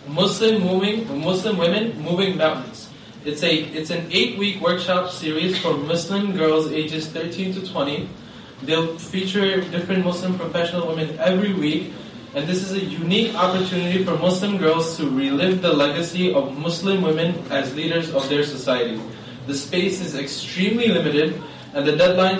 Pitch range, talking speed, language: 155-185 Hz, 155 wpm, English